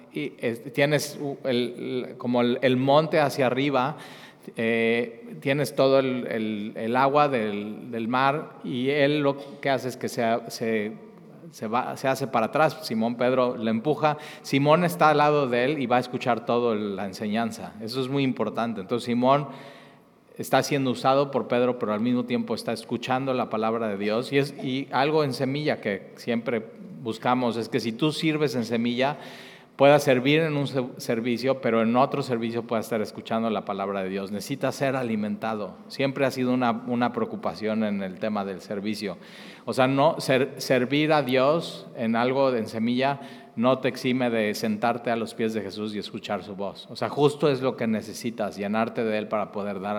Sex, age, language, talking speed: male, 40-59, Spanish, 180 wpm